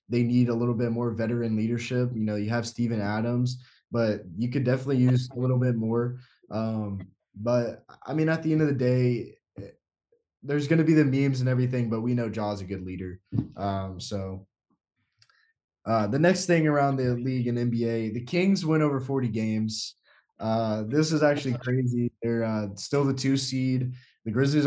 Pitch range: 115-135 Hz